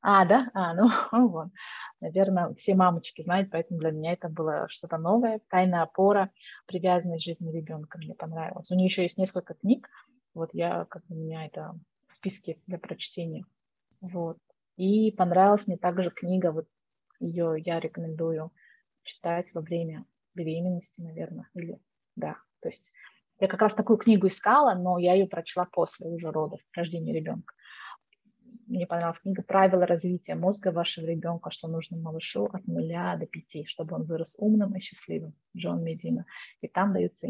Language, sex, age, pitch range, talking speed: Russian, female, 20-39, 165-195 Hz, 160 wpm